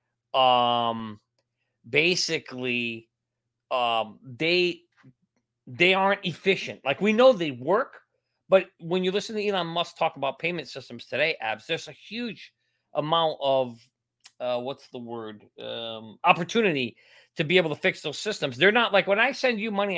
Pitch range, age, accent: 130-195 Hz, 40-59, American